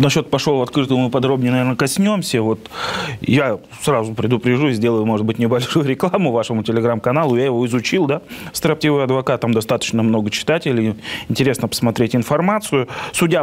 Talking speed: 145 wpm